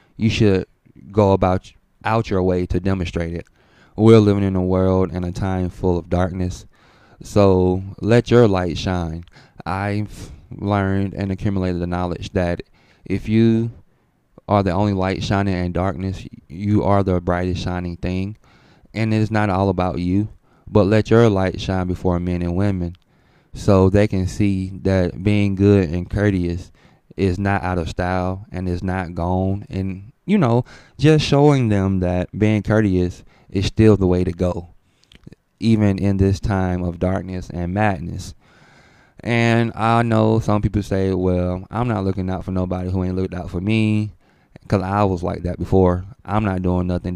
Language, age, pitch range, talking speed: English, 20-39, 90-105 Hz, 170 wpm